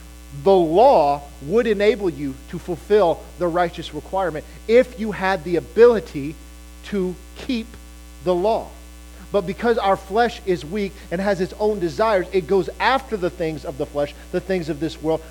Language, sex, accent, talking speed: English, male, American, 170 wpm